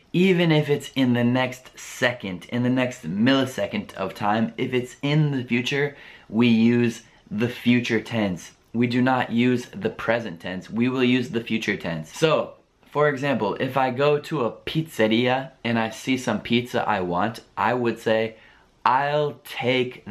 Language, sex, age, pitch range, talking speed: Italian, male, 20-39, 110-130 Hz, 170 wpm